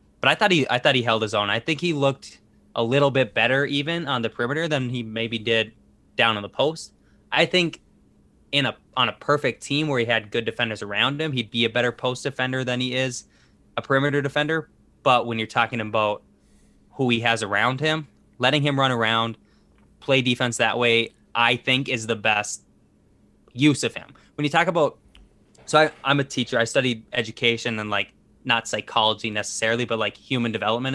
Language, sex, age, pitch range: English, male, 20-39, 110-140 Hz